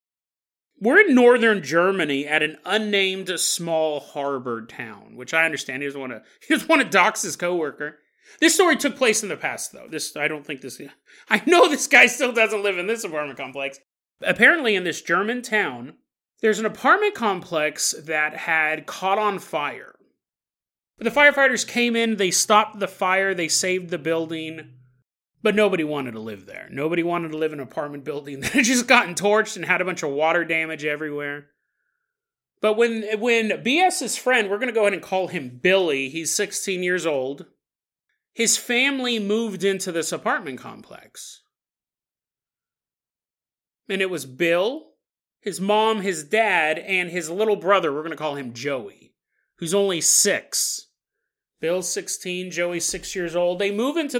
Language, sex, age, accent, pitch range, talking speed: English, male, 30-49, American, 155-220 Hz, 170 wpm